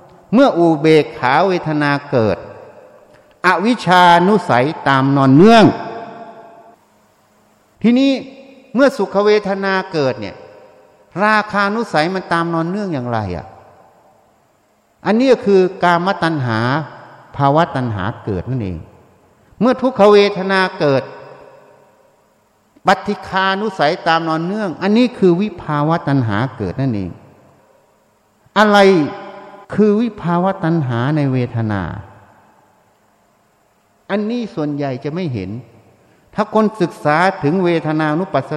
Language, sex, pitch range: Thai, male, 135-200 Hz